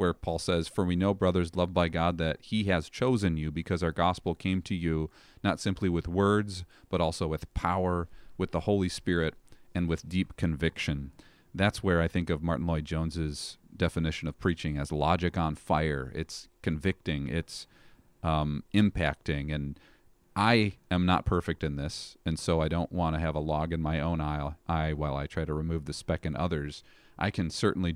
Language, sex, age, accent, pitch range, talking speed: English, male, 40-59, American, 80-95 Hz, 190 wpm